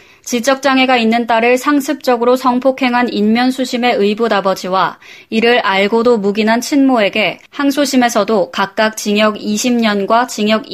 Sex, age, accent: female, 20-39, native